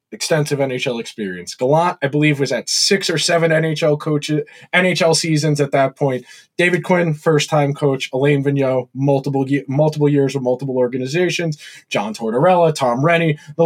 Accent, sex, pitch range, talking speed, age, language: American, male, 145-205 Hz, 155 wpm, 20-39, English